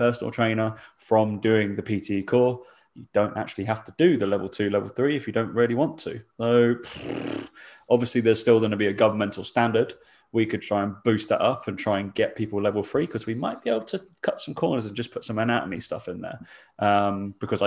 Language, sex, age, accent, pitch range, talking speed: English, male, 20-39, British, 100-120 Hz, 230 wpm